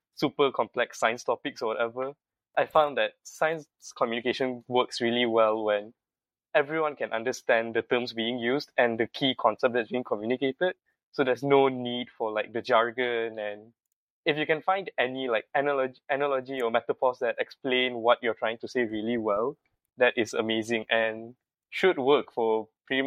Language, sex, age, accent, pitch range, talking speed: English, male, 10-29, Malaysian, 115-135 Hz, 170 wpm